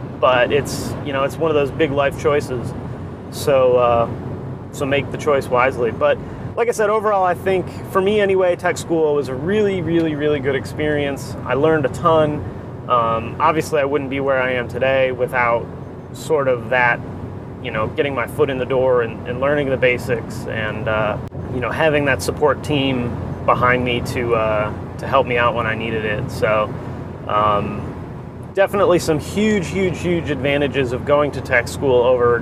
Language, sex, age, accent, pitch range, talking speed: English, male, 30-49, American, 120-145 Hz, 185 wpm